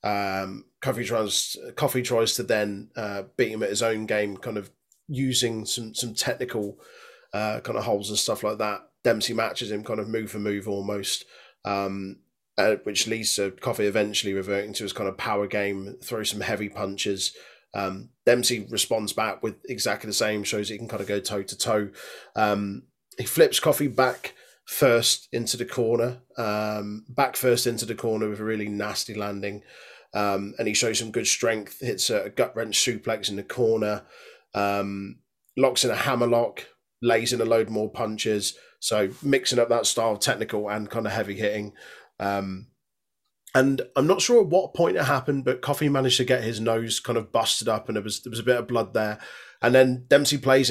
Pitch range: 105-120 Hz